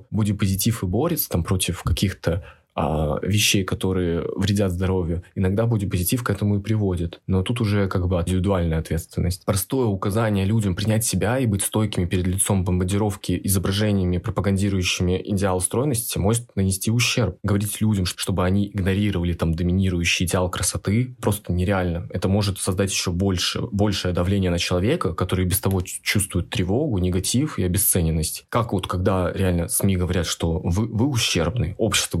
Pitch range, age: 90-105 Hz, 20-39